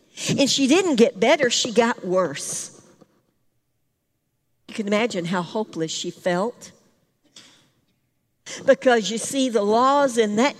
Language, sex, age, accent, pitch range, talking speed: English, female, 60-79, American, 180-265 Hz, 125 wpm